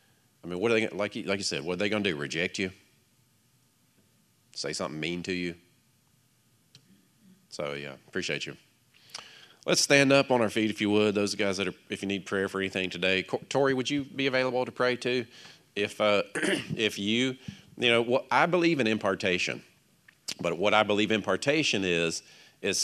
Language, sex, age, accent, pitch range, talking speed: English, male, 40-59, American, 95-120 Hz, 195 wpm